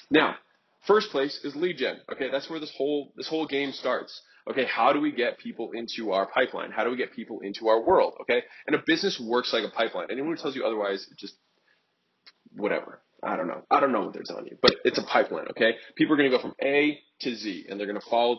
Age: 20-39